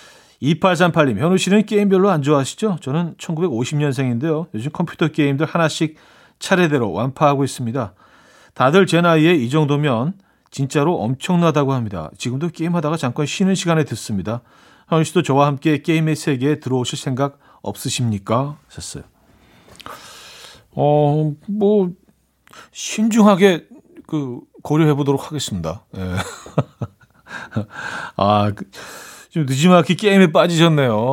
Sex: male